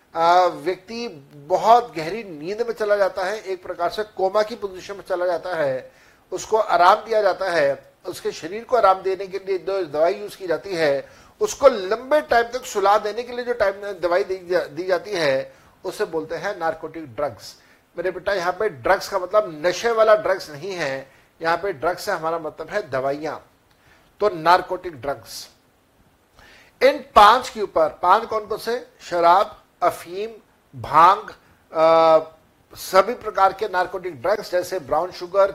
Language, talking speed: Hindi, 165 wpm